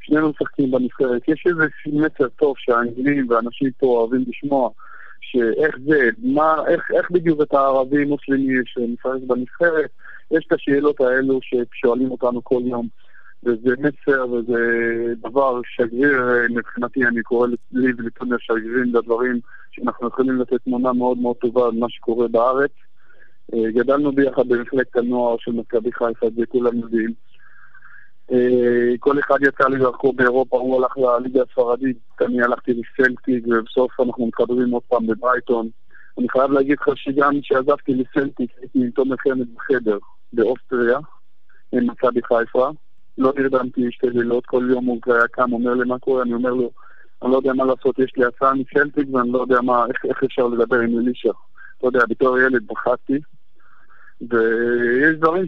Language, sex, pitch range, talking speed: Hebrew, male, 120-135 Hz, 145 wpm